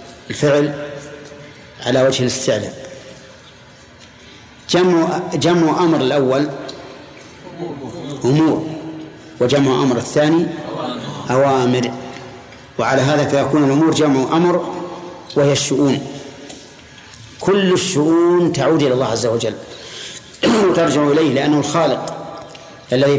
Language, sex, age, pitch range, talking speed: Arabic, male, 40-59, 130-155 Hz, 85 wpm